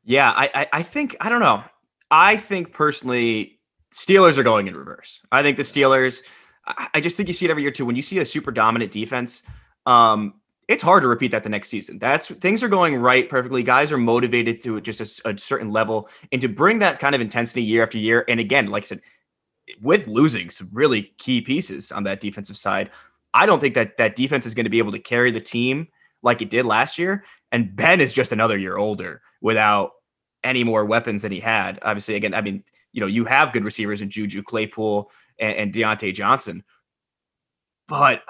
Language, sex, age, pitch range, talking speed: English, male, 20-39, 110-135 Hz, 215 wpm